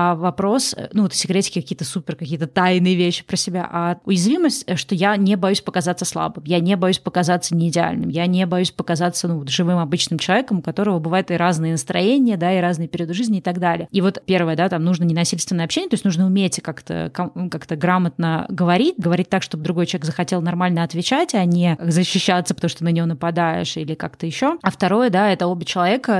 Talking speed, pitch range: 200 wpm, 170-195 Hz